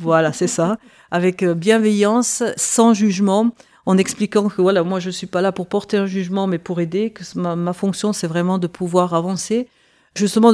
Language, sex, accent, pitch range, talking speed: French, female, French, 175-210 Hz, 195 wpm